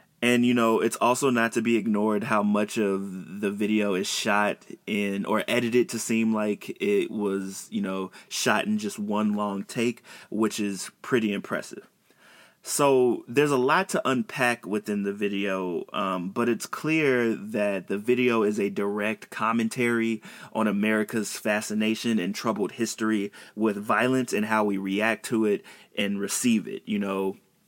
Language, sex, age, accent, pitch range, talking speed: English, male, 20-39, American, 100-120 Hz, 165 wpm